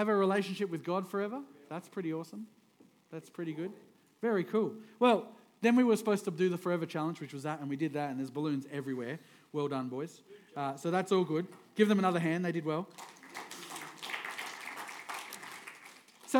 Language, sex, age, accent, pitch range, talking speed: English, male, 40-59, Australian, 155-200 Hz, 185 wpm